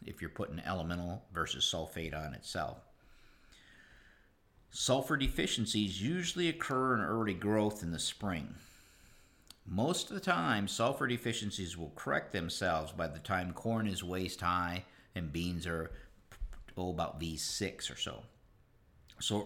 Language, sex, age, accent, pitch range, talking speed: English, male, 50-69, American, 85-100 Hz, 125 wpm